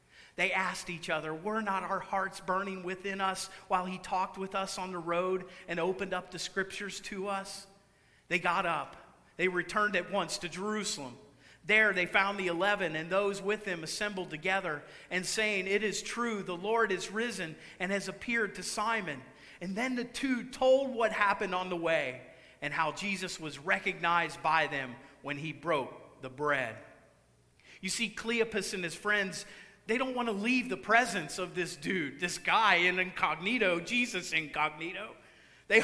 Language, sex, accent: English, male, American